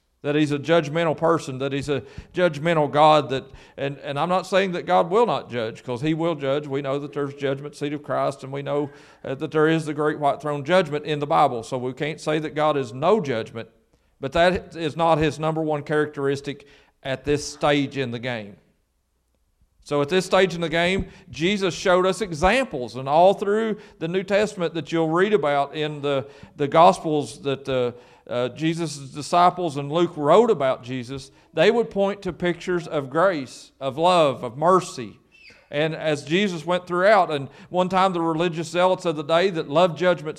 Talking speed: 200 wpm